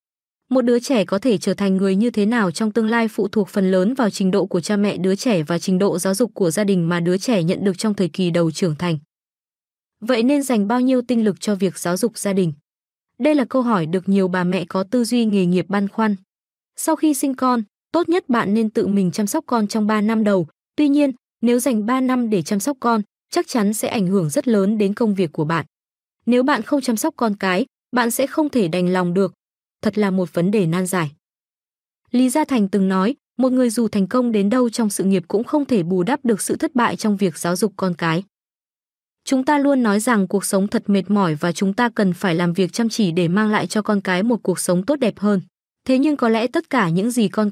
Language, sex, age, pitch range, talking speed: Vietnamese, female, 20-39, 190-245 Hz, 255 wpm